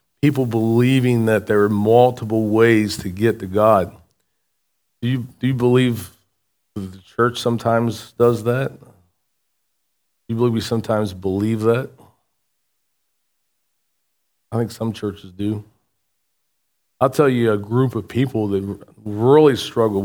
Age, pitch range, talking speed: 40-59, 105-120 Hz, 130 wpm